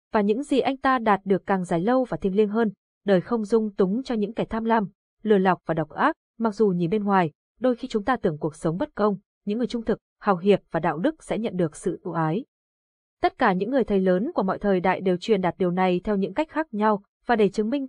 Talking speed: 270 wpm